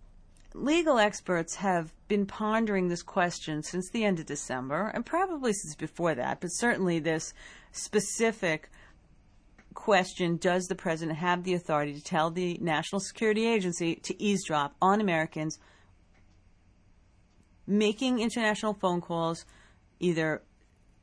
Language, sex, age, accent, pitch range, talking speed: English, female, 40-59, American, 140-210 Hz, 125 wpm